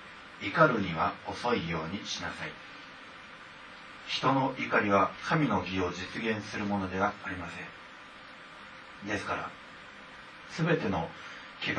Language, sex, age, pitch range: Japanese, male, 40-59, 90-110 Hz